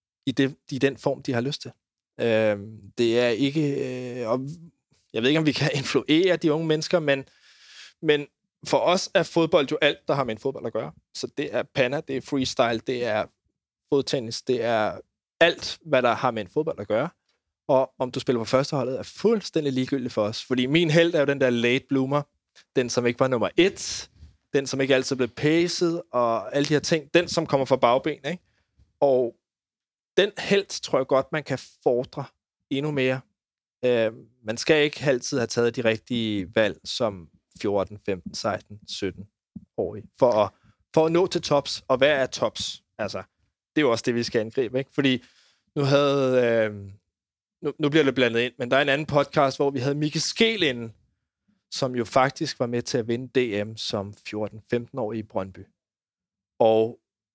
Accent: native